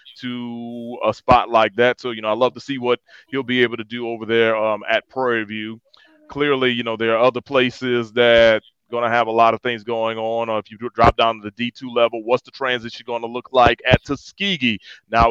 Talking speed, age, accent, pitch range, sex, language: 230 wpm, 30-49, American, 115-135 Hz, male, English